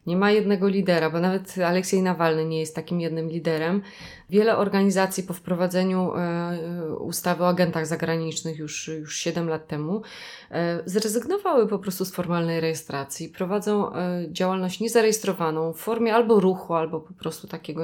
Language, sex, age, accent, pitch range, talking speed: Polish, female, 20-39, native, 175-210 Hz, 145 wpm